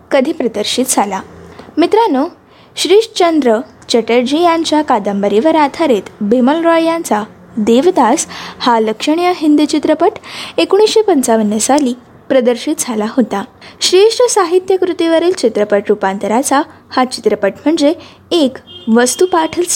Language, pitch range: Marathi, 230-330 Hz